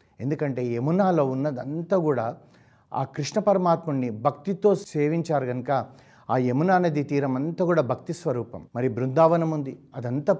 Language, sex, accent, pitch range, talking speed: Telugu, male, native, 125-160 Hz, 125 wpm